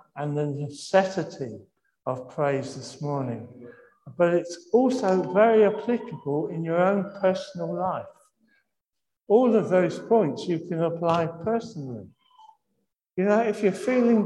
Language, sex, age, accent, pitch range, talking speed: English, male, 60-79, British, 170-235 Hz, 125 wpm